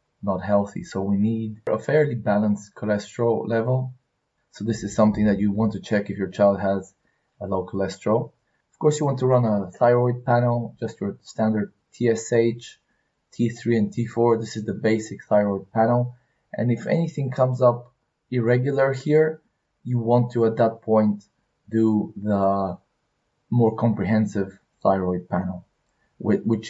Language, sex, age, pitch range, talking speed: English, male, 20-39, 105-120 Hz, 155 wpm